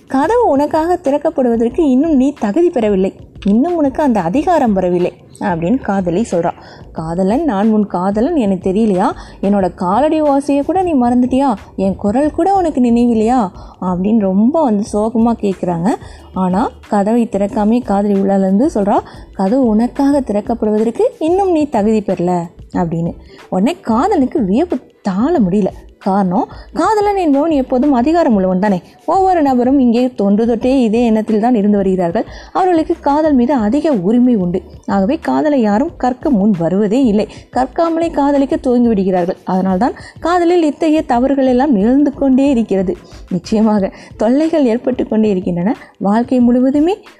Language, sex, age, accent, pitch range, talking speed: Tamil, female, 20-39, native, 200-280 Hz, 130 wpm